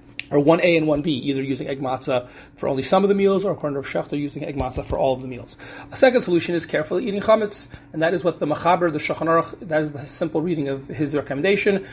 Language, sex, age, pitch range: English, male, 30-49, 145-175 Hz